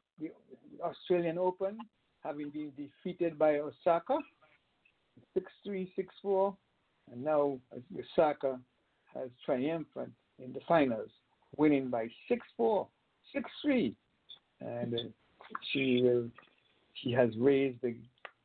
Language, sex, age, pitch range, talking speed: English, male, 60-79, 120-165 Hz, 100 wpm